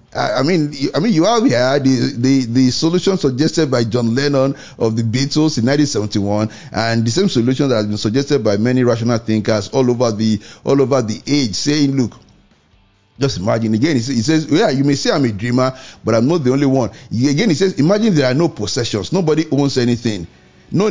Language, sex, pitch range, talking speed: English, male, 115-150 Hz, 205 wpm